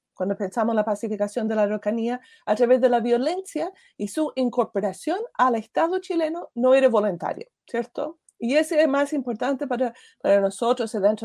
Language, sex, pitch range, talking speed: Spanish, female, 210-295 Hz, 170 wpm